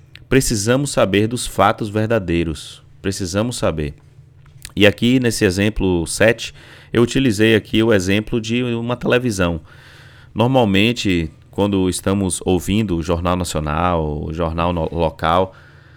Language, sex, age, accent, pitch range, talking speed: Portuguese, male, 30-49, Brazilian, 90-130 Hz, 115 wpm